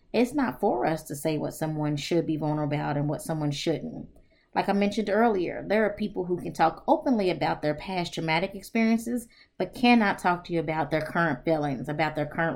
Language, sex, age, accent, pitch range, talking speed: English, female, 20-39, American, 155-195 Hz, 210 wpm